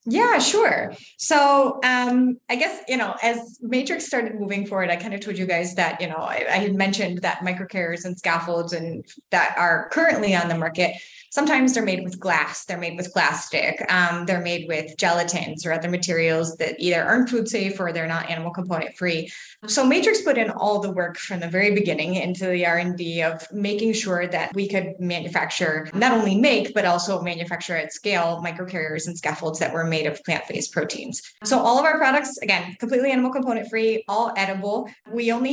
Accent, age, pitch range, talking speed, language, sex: American, 20-39, 175-225 Hz, 200 wpm, English, female